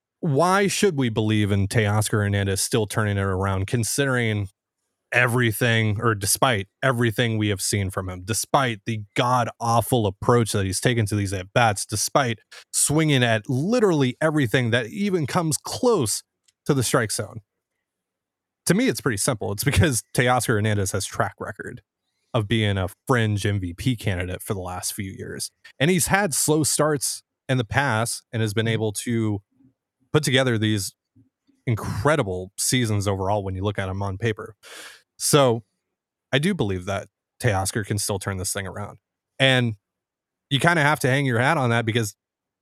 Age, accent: 30-49, American